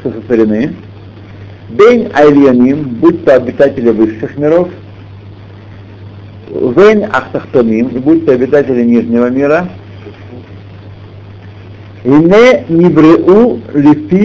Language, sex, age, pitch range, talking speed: Russian, male, 60-79, 100-170 Hz, 70 wpm